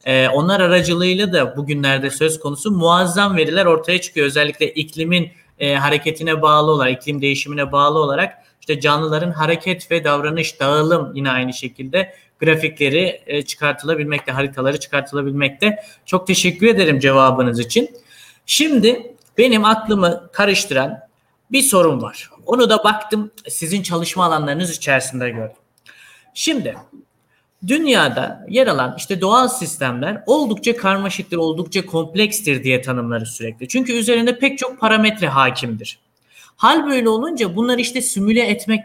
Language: Turkish